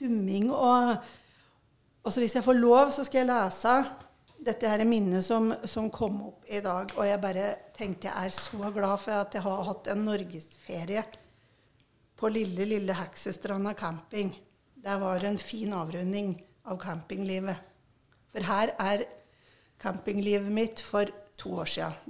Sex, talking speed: female, 150 wpm